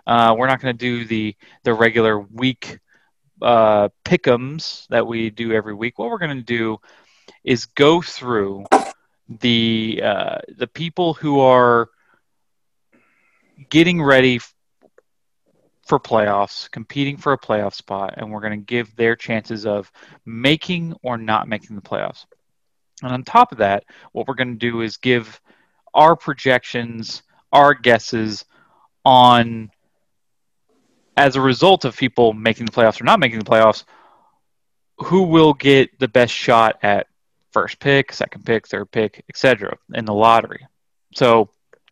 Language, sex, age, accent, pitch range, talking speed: English, male, 30-49, American, 110-135 Hz, 150 wpm